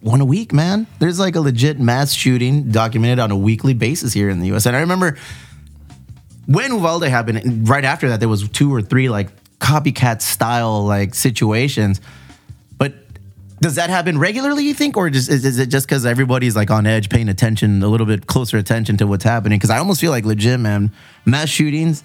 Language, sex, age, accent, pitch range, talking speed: English, male, 20-39, American, 110-140 Hz, 205 wpm